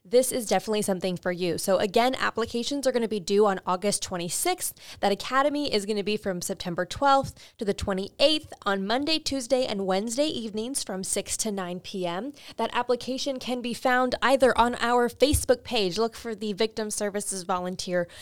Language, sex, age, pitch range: English, female, 20-39, 200-260 Hz